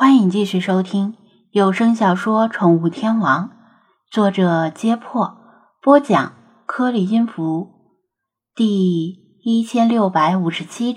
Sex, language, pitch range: female, Chinese, 185-245 Hz